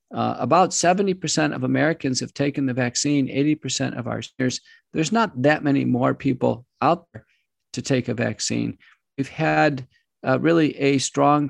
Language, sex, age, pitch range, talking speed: English, male, 50-69, 125-145 Hz, 160 wpm